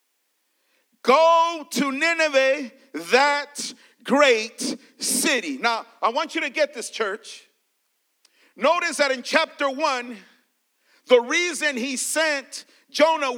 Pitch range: 260-320 Hz